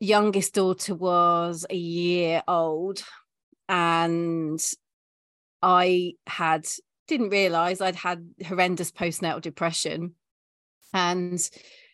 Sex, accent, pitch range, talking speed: female, British, 165-195 Hz, 85 wpm